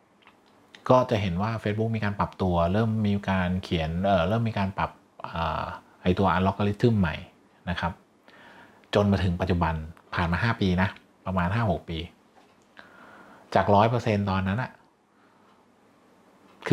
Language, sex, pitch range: Thai, male, 90-115 Hz